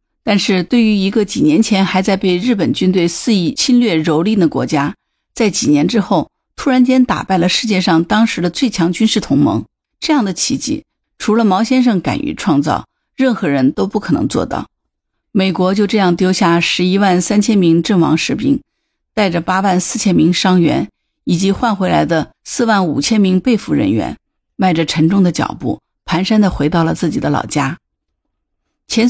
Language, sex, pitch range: Chinese, female, 175-235 Hz